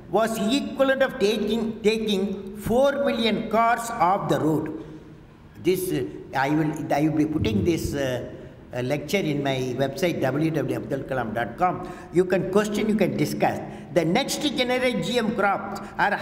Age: 60-79